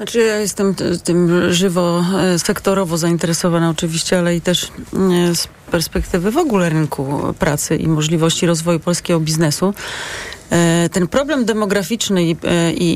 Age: 30-49